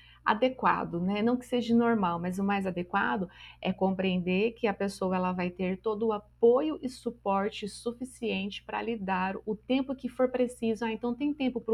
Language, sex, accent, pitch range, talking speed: Portuguese, female, Brazilian, 190-230 Hz, 190 wpm